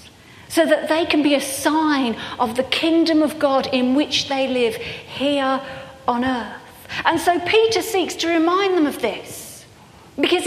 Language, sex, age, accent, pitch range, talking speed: English, female, 40-59, British, 245-325 Hz, 165 wpm